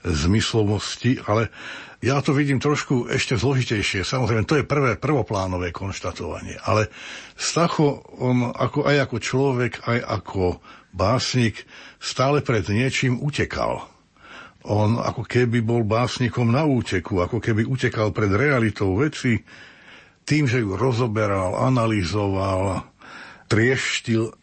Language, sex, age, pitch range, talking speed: Slovak, male, 60-79, 100-130 Hz, 115 wpm